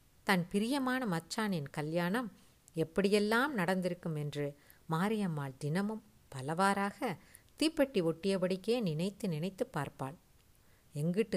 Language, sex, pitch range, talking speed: Tamil, female, 145-190 Hz, 85 wpm